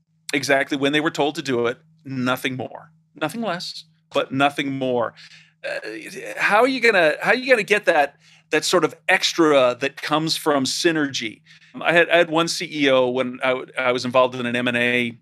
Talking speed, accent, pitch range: 195 wpm, American, 130-160 Hz